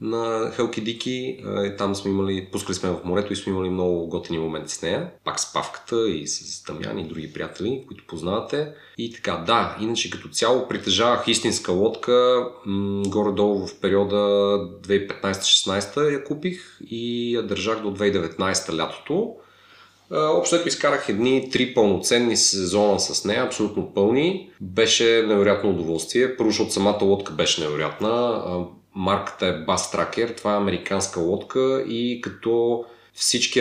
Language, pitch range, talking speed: Bulgarian, 95-120 Hz, 145 wpm